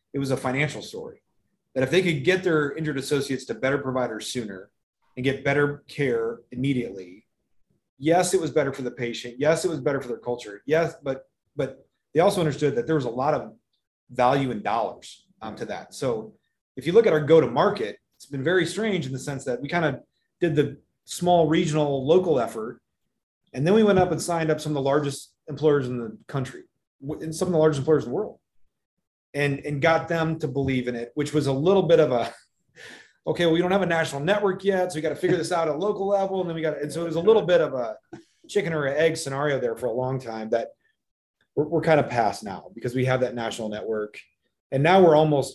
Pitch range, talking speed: 130-165 Hz, 235 wpm